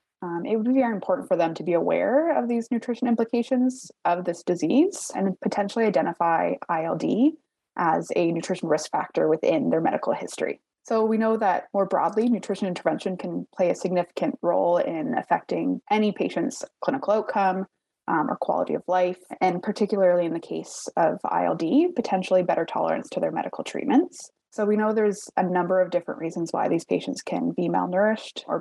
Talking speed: 180 wpm